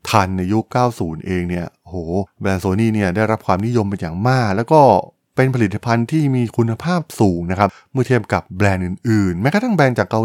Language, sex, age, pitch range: Thai, male, 20-39, 95-120 Hz